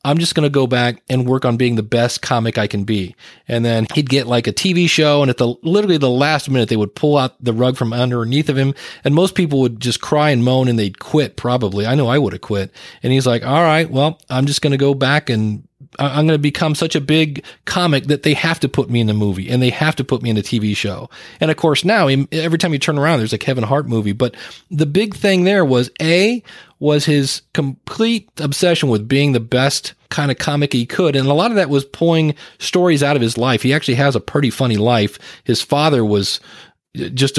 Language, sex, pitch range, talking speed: English, male, 120-155 Hz, 250 wpm